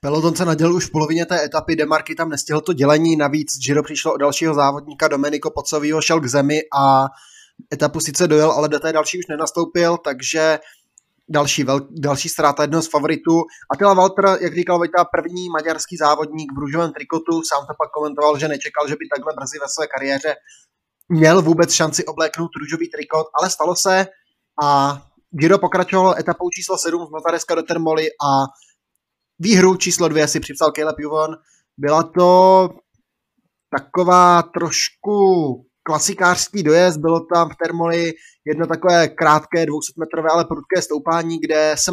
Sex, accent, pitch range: male, native, 150-170 Hz